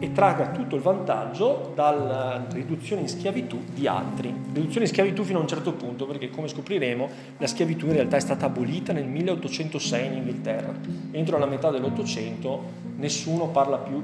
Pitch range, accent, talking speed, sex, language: 130-180 Hz, native, 170 wpm, male, Italian